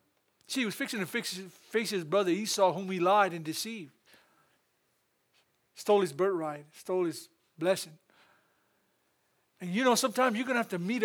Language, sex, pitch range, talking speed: English, male, 190-255 Hz, 175 wpm